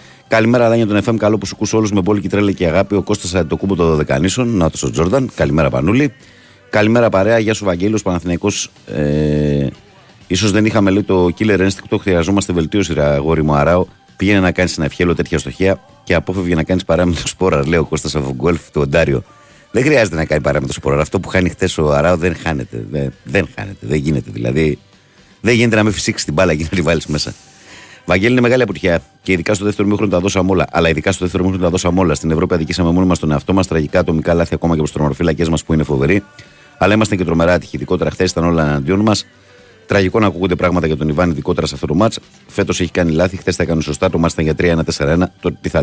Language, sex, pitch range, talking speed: Greek, male, 80-100 Hz, 215 wpm